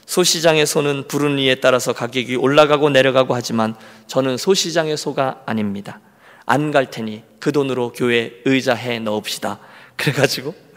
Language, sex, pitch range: Korean, male, 125-195 Hz